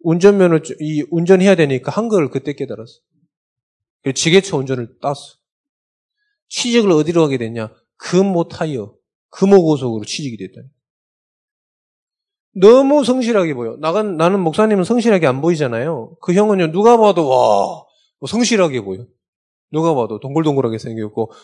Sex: male